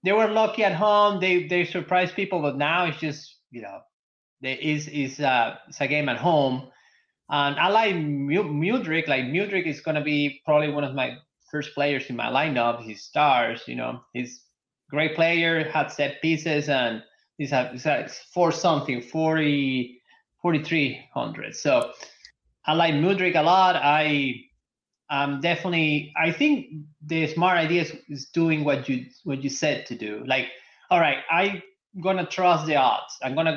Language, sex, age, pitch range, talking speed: English, male, 20-39, 140-175 Hz, 175 wpm